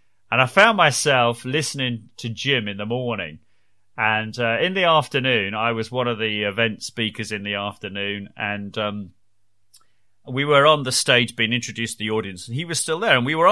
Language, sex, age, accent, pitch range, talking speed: English, male, 30-49, British, 105-135 Hz, 200 wpm